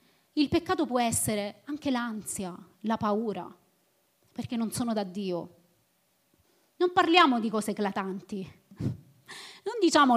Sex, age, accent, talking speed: female, 30-49, native, 120 wpm